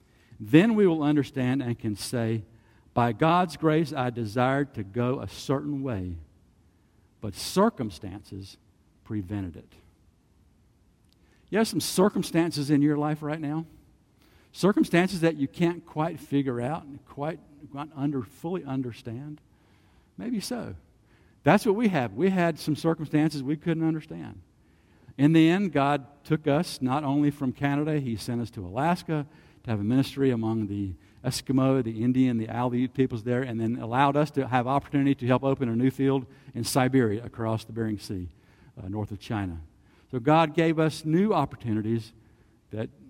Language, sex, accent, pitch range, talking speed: English, male, American, 105-145 Hz, 155 wpm